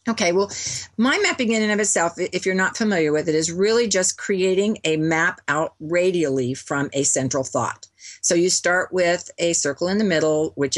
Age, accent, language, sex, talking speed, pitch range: 50-69, American, English, female, 200 wpm, 140-180 Hz